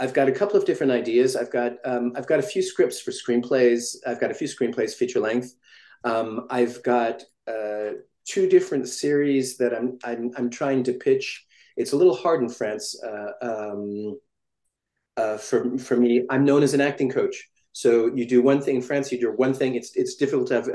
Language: English